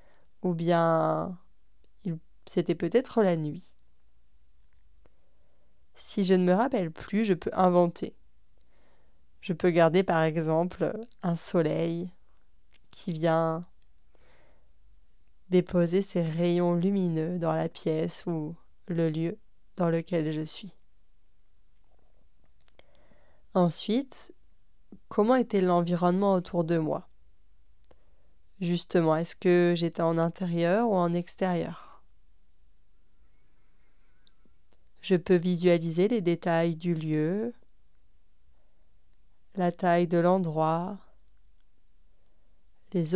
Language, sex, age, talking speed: French, female, 20-39, 90 wpm